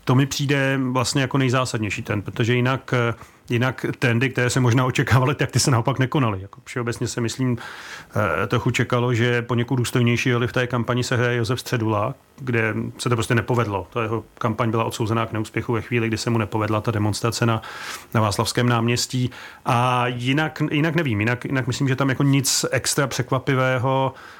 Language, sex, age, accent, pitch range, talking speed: Czech, male, 40-59, native, 120-135 Hz, 180 wpm